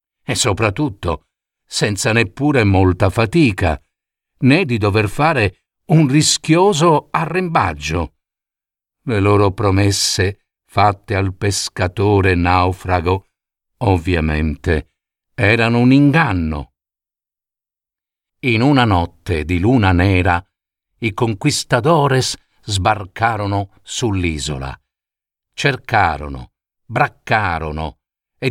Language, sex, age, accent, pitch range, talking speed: Italian, male, 50-69, native, 90-130 Hz, 80 wpm